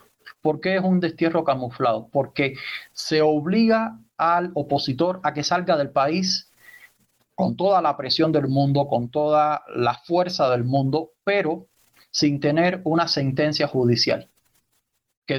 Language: Spanish